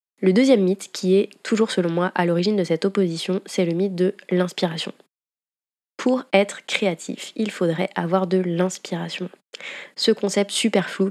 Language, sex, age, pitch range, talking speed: French, female, 20-39, 175-205 Hz, 160 wpm